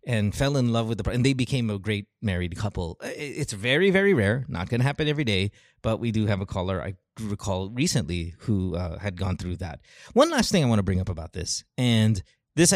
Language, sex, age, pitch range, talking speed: English, male, 30-49, 105-145 Hz, 235 wpm